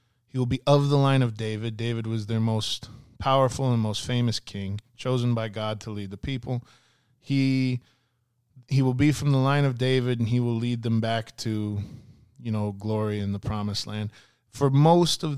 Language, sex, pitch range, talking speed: English, male, 110-130 Hz, 195 wpm